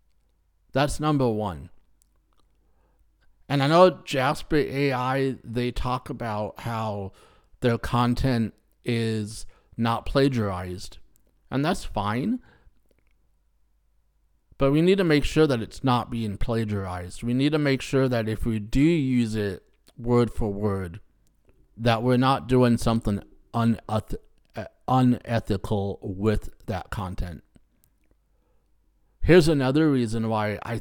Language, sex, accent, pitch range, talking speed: English, male, American, 105-135 Hz, 115 wpm